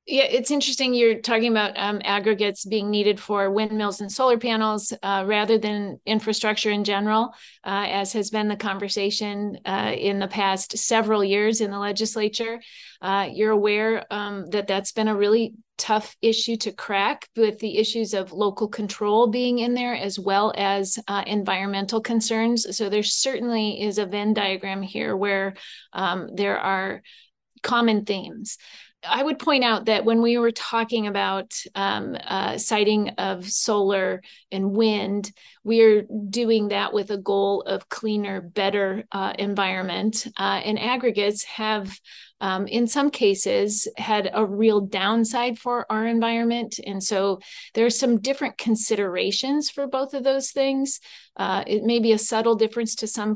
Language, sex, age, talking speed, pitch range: English, female, 30-49, 160 wpm, 200-230 Hz